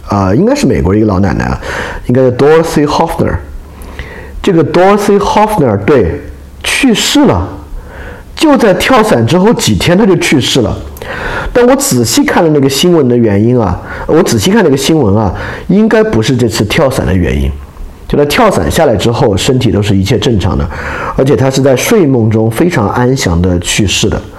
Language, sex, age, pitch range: Chinese, male, 50-69, 95-135 Hz